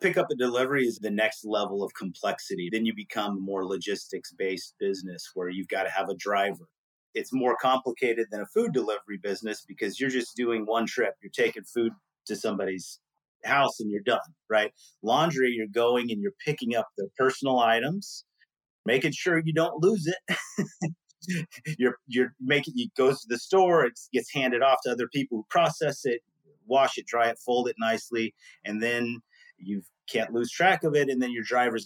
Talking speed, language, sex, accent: 190 wpm, English, male, American